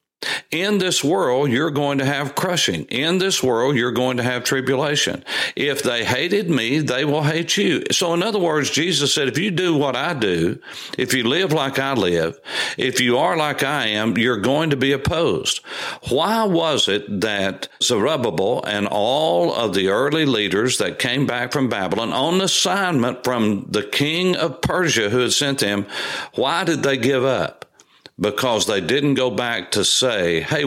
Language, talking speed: English, 180 wpm